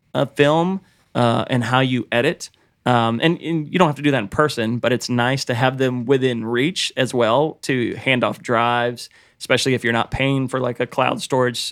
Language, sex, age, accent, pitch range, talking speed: English, male, 30-49, American, 115-130 Hz, 215 wpm